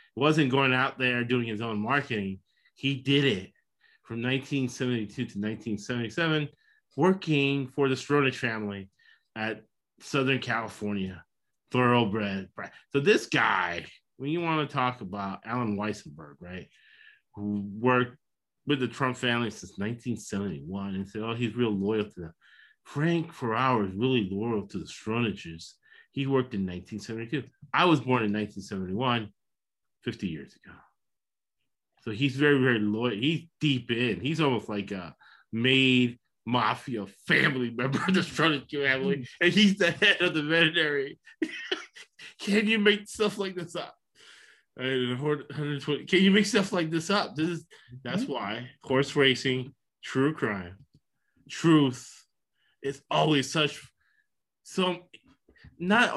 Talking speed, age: 135 wpm, 30-49